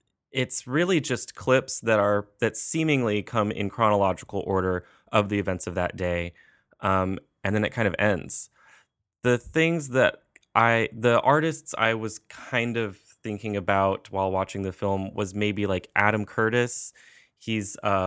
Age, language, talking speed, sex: 20-39, English, 160 wpm, male